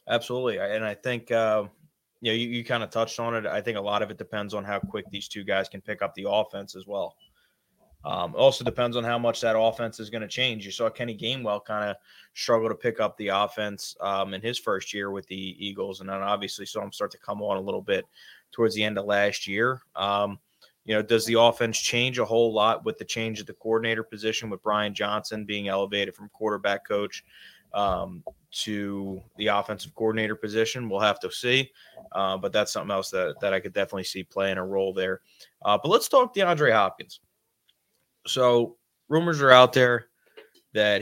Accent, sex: American, male